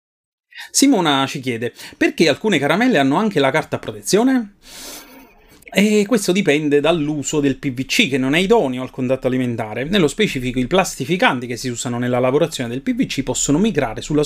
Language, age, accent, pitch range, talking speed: Italian, 30-49, native, 120-175 Hz, 160 wpm